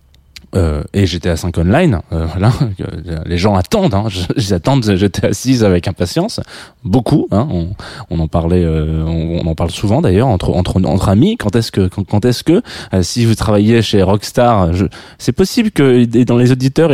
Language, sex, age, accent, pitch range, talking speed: French, male, 20-39, French, 90-120 Hz, 195 wpm